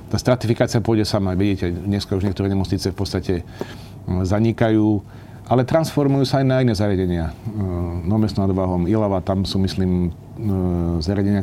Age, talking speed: 40-59, 140 wpm